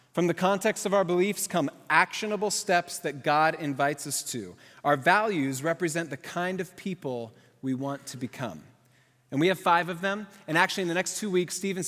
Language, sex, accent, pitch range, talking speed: English, male, American, 135-180 Hz, 200 wpm